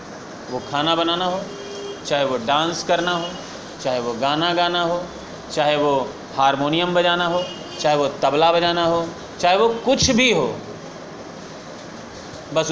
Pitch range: 160-200 Hz